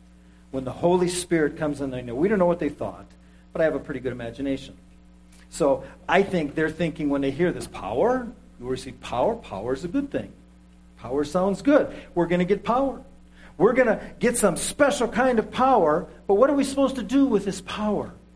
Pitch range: 135-205 Hz